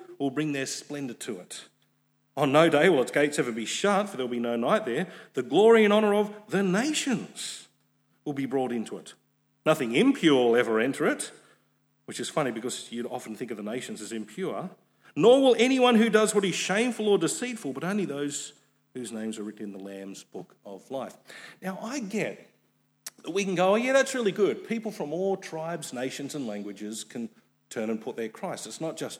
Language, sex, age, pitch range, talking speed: English, male, 40-59, 125-210 Hz, 210 wpm